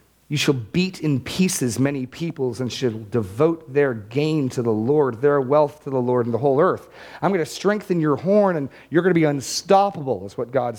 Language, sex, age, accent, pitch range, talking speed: English, male, 40-59, American, 120-185 Hz, 215 wpm